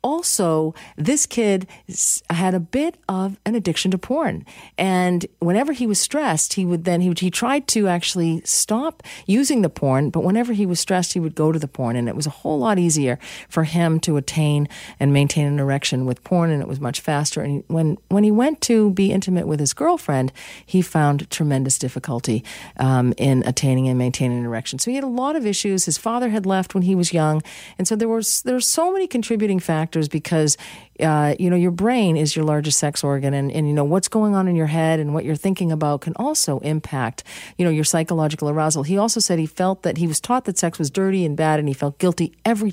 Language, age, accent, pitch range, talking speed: English, 40-59, American, 150-215 Hz, 230 wpm